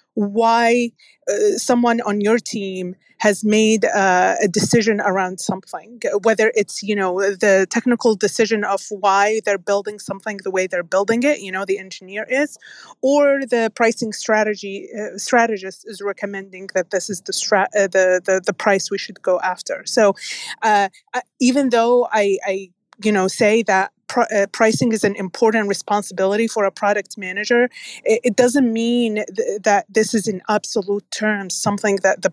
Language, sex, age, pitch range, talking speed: English, female, 30-49, 195-240 Hz, 165 wpm